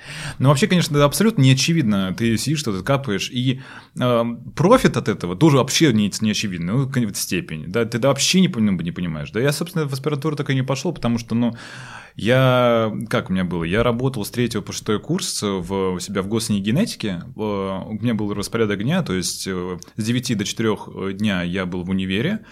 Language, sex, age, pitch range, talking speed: Russian, male, 20-39, 95-130 Hz, 205 wpm